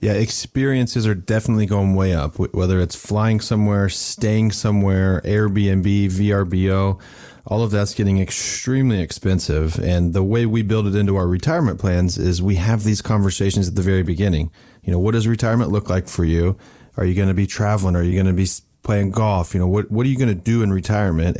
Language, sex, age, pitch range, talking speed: English, male, 30-49, 95-110 Hz, 205 wpm